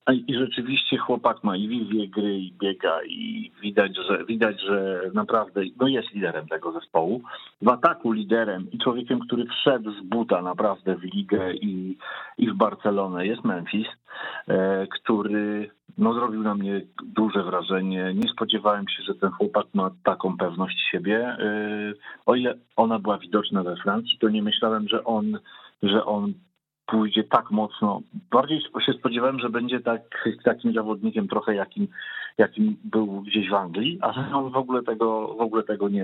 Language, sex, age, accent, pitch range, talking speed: Polish, male, 40-59, native, 100-120 Hz, 160 wpm